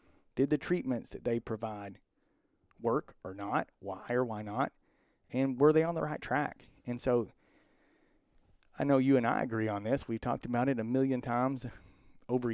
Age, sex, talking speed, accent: 40-59, male, 180 wpm, American